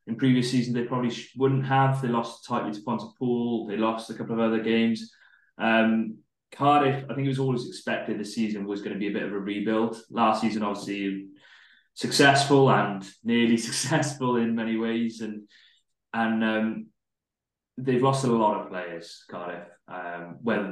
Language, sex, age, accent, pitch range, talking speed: English, male, 20-39, British, 105-120 Hz, 180 wpm